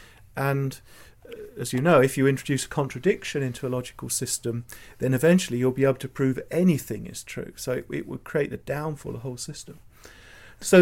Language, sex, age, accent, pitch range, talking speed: English, male, 40-59, British, 120-155 Hz, 200 wpm